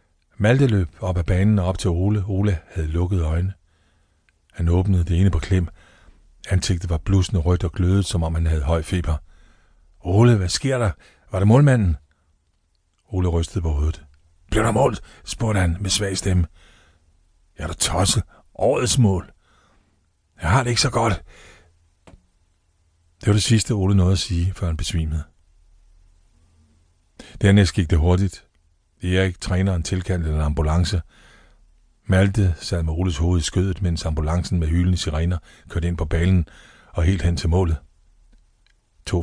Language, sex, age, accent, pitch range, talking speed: Danish, male, 60-79, native, 80-95 Hz, 160 wpm